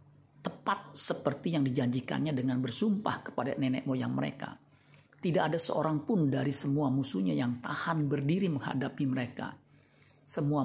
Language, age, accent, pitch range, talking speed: Indonesian, 50-69, native, 130-150 Hz, 130 wpm